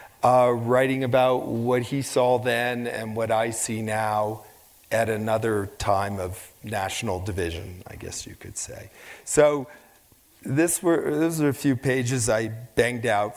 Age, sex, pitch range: 40-59, male, 110-140 Hz